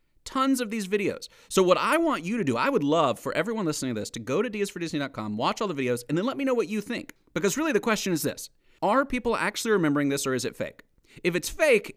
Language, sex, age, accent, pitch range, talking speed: English, male, 30-49, American, 120-165 Hz, 265 wpm